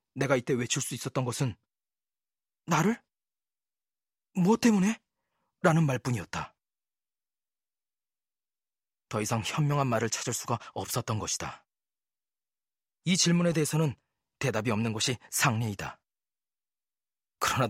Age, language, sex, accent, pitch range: 40-59, Korean, male, native, 110-145 Hz